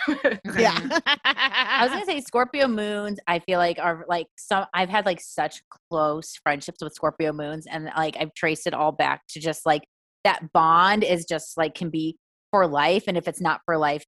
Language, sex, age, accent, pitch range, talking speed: English, female, 20-39, American, 165-230 Hz, 200 wpm